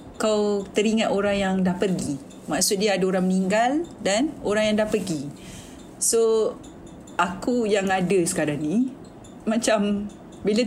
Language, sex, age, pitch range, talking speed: Malay, female, 40-59, 190-250 Hz, 135 wpm